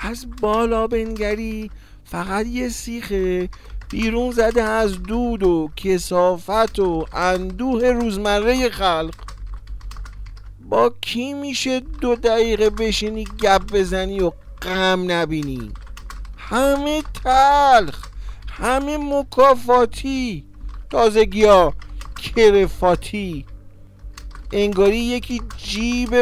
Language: English